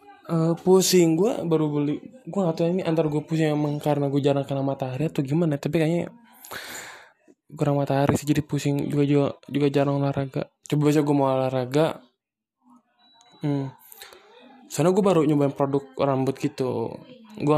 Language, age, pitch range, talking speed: Indonesian, 20-39, 135-160 Hz, 155 wpm